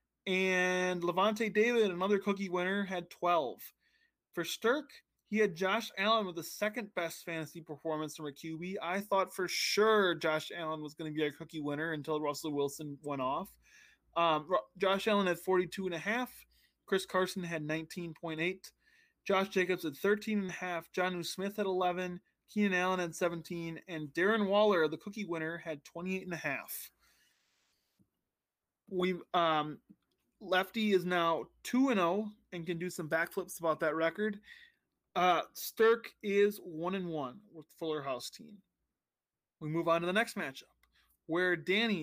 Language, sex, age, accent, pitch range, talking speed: English, male, 20-39, American, 165-200 Hz, 160 wpm